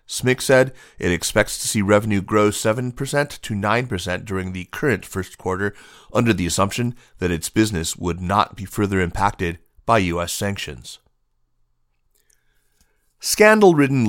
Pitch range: 90-110 Hz